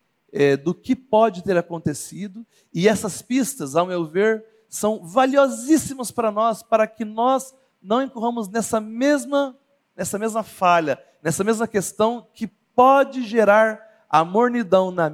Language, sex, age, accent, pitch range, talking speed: Portuguese, male, 40-59, Brazilian, 185-235 Hz, 135 wpm